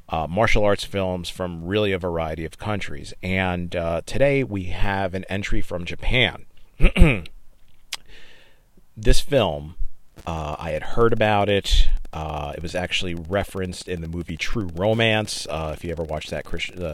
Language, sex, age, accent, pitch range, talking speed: English, male, 40-59, American, 85-105 Hz, 155 wpm